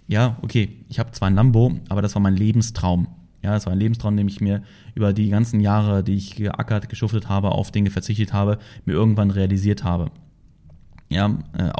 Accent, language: German, German